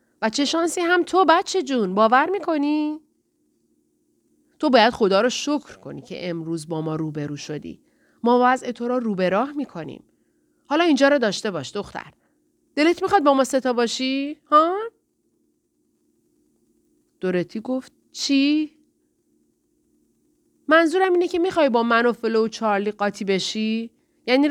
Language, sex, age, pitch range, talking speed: Persian, female, 30-49, 220-310 Hz, 135 wpm